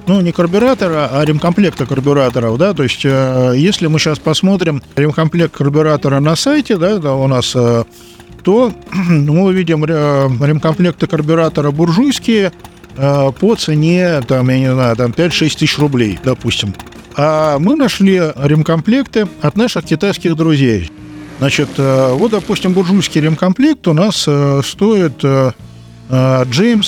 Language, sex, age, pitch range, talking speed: Russian, male, 50-69, 135-185 Hz, 115 wpm